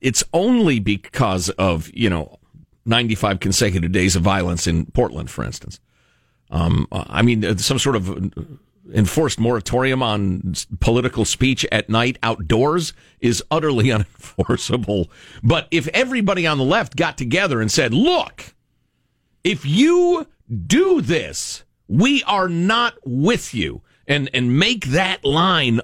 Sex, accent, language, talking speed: male, American, English, 130 wpm